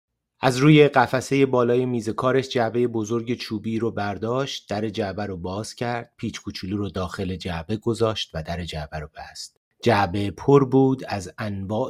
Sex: male